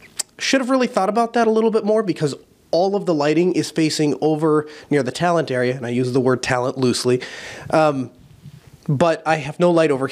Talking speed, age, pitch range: 215 wpm, 30-49, 130-160 Hz